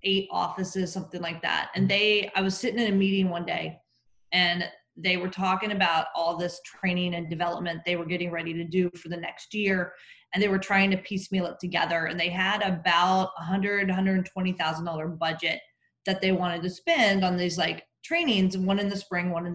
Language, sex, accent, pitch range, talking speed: English, female, American, 175-210 Hz, 200 wpm